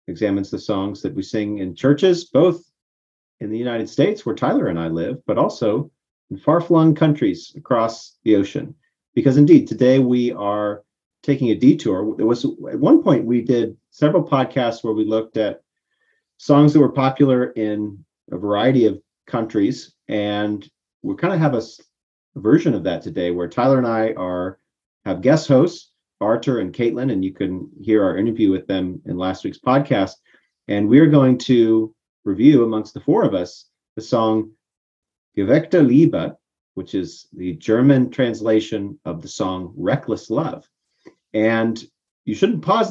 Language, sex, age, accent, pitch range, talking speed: English, male, 40-59, American, 105-135 Hz, 165 wpm